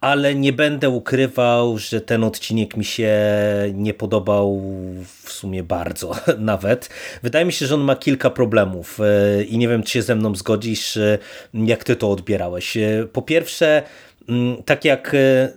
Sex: male